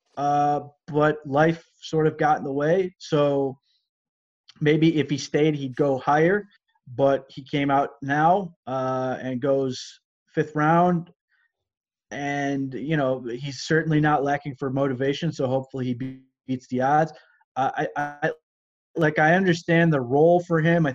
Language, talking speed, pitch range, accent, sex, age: English, 150 wpm, 125-150 Hz, American, male, 20-39